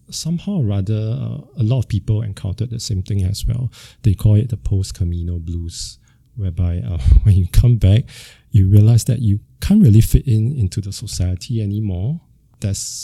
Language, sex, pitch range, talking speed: English, male, 90-120 Hz, 180 wpm